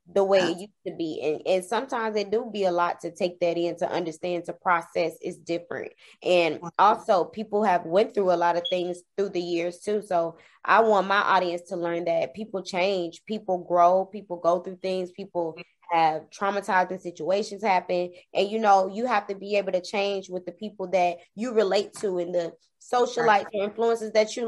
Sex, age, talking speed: female, 20-39, 205 wpm